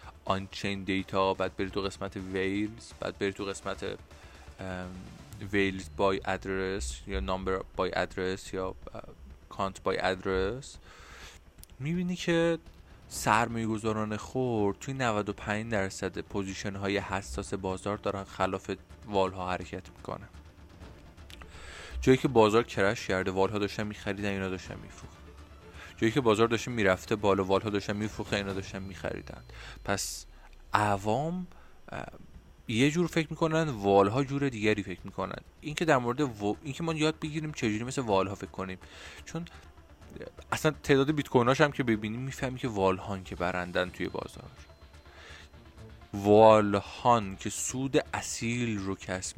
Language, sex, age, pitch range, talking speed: Persian, male, 20-39, 95-115 Hz, 135 wpm